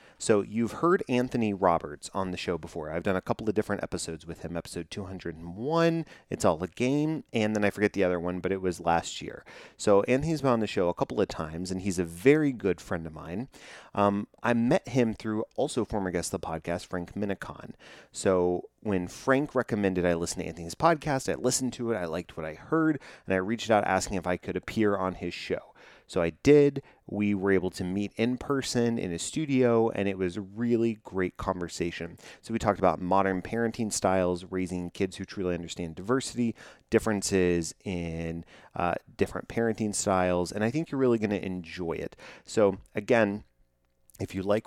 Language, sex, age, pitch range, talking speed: English, male, 30-49, 90-115 Hz, 200 wpm